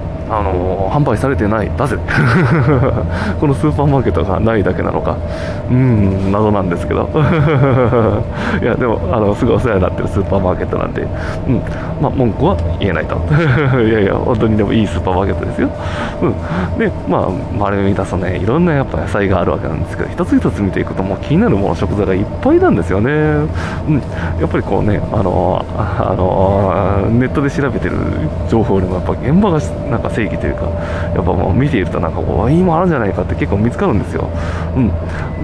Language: Japanese